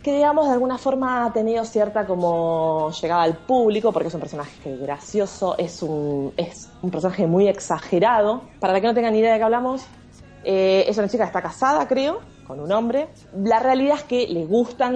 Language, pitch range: Spanish, 160-225 Hz